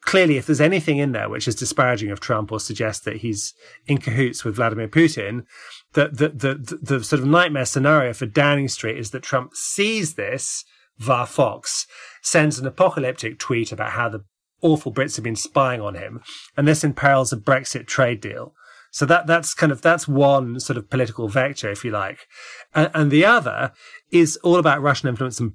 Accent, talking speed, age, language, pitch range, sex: British, 195 wpm, 30-49, English, 120-155 Hz, male